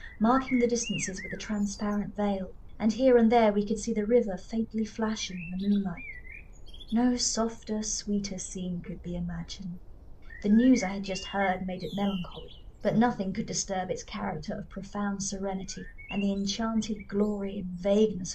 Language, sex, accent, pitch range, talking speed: English, female, British, 190-220 Hz, 170 wpm